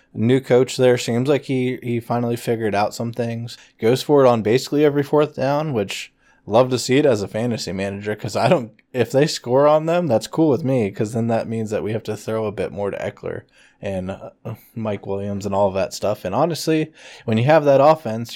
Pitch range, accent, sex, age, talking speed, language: 105-130 Hz, American, male, 20-39, 230 wpm, English